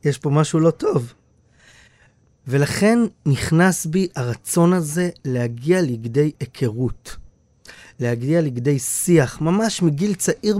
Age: 30-49